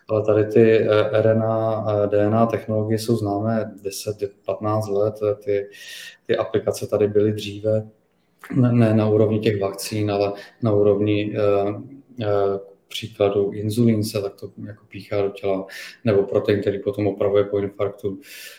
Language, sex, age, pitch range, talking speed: Czech, male, 20-39, 100-110 Hz, 125 wpm